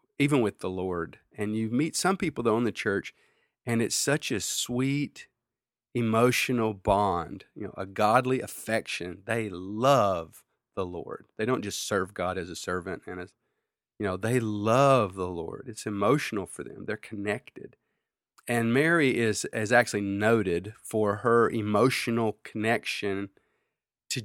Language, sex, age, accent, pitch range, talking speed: English, male, 40-59, American, 100-125 Hz, 155 wpm